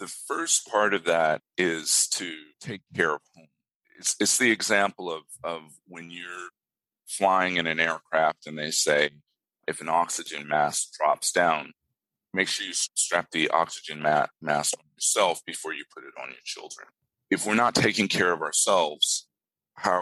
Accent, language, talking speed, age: American, English, 170 wpm, 40-59